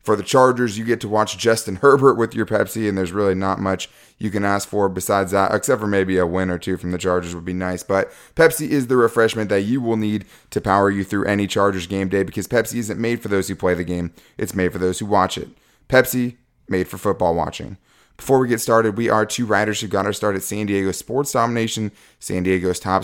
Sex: male